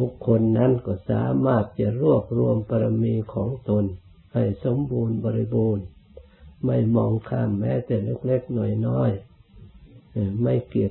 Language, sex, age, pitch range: Thai, male, 60-79, 100-125 Hz